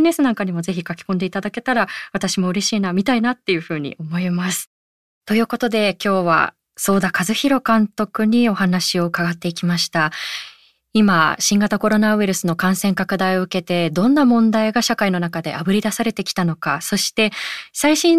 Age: 20-39